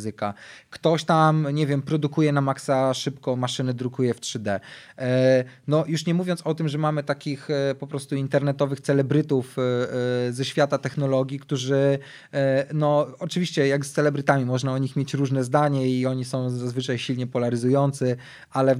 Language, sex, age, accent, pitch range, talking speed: Polish, male, 20-39, native, 130-150 Hz, 155 wpm